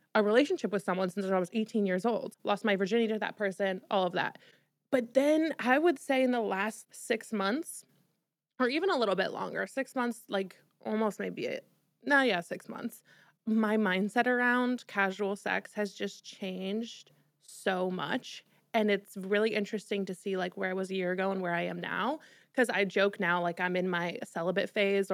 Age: 20-39